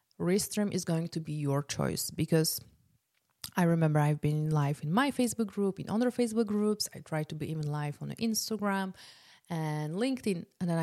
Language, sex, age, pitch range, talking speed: English, female, 30-49, 155-195 Hz, 185 wpm